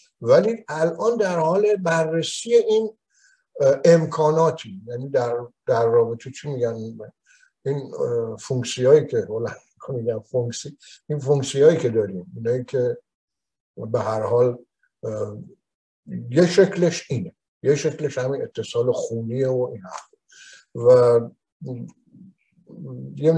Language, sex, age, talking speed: Persian, male, 60-79, 100 wpm